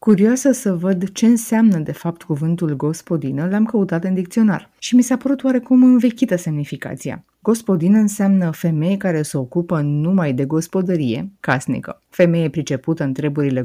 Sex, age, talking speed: female, 30-49, 150 wpm